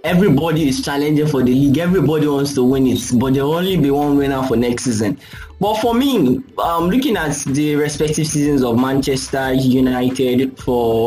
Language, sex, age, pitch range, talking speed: English, male, 20-39, 130-165 Hz, 185 wpm